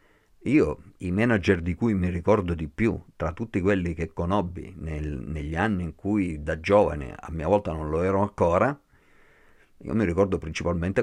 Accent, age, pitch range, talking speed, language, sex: native, 50-69, 85-105 Hz, 170 wpm, Italian, male